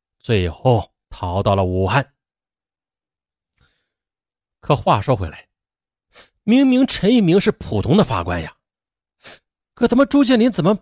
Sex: male